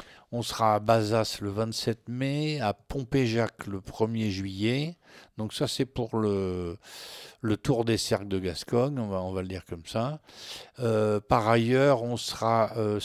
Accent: French